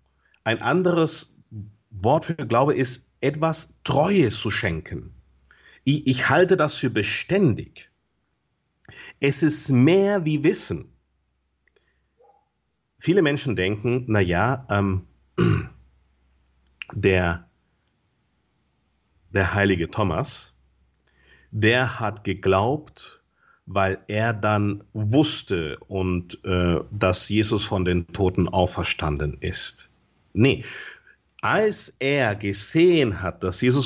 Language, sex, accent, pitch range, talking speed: German, male, German, 95-145 Hz, 95 wpm